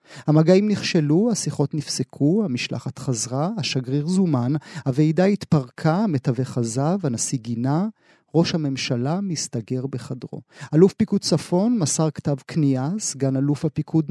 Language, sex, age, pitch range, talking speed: Hebrew, male, 40-59, 140-170 Hz, 115 wpm